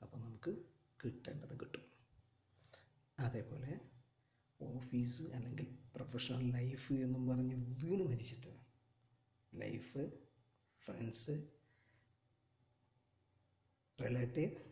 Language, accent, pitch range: Malayalam, native, 115-130 Hz